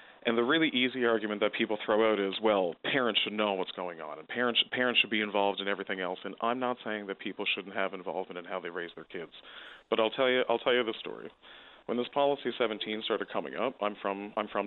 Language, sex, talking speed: English, male, 240 wpm